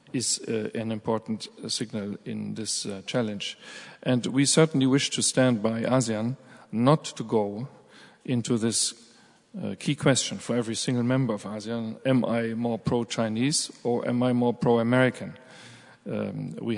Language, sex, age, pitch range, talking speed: English, male, 40-59, 110-125 Hz, 145 wpm